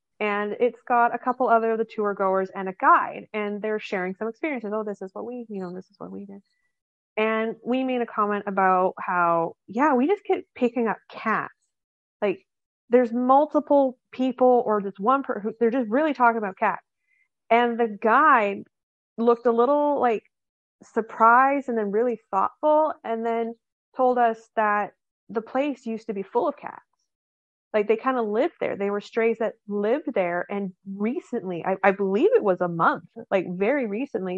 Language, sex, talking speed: English, female, 185 wpm